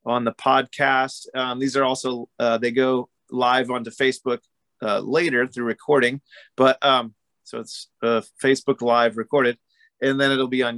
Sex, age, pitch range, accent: male, 30-49, 120-145 Hz, American